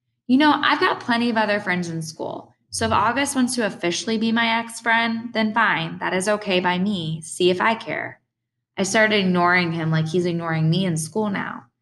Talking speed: 210 wpm